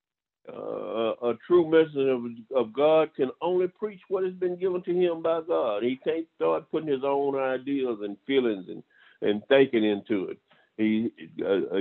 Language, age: English, 50-69